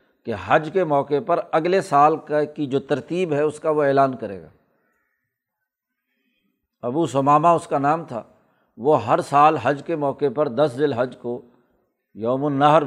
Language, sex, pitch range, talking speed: Urdu, male, 135-165 Hz, 170 wpm